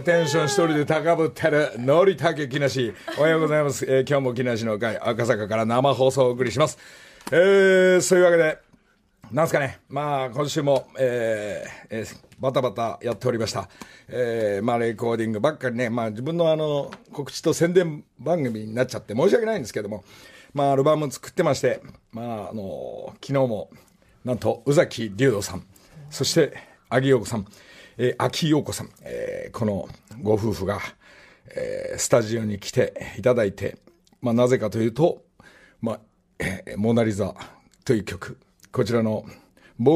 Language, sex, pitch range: Japanese, male, 110-145 Hz